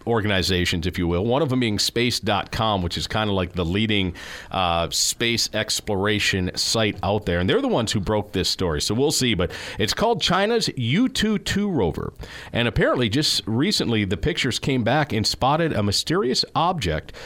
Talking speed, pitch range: 180 wpm, 100-130 Hz